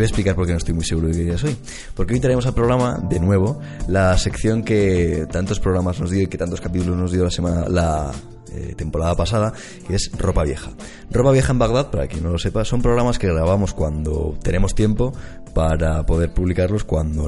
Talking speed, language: 220 wpm, Spanish